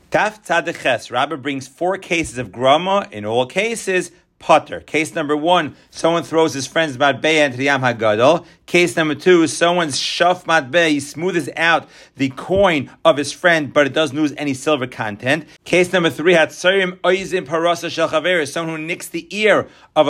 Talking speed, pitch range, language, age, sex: 165 wpm, 145-185 Hz, English, 40-59, male